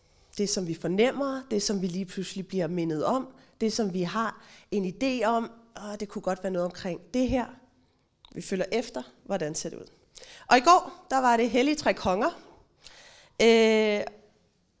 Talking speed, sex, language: 180 wpm, female, Danish